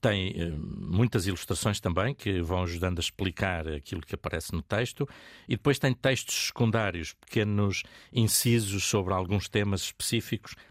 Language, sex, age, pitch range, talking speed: Portuguese, male, 60-79, 90-110 Hz, 140 wpm